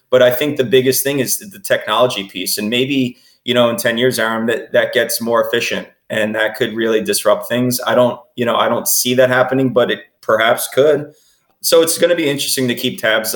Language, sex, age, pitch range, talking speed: English, male, 20-39, 110-130 Hz, 230 wpm